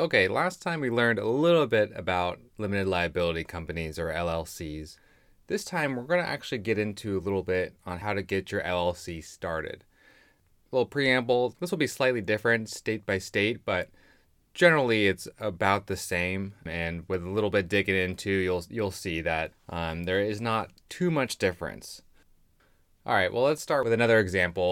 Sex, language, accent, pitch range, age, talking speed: male, English, American, 90-115 Hz, 20-39, 180 wpm